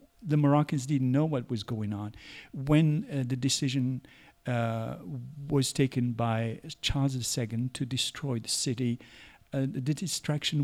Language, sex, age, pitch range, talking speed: English, male, 50-69, 120-145 Hz, 140 wpm